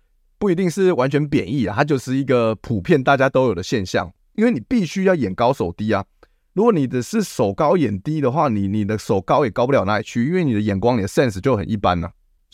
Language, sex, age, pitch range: Chinese, male, 20-39, 95-135 Hz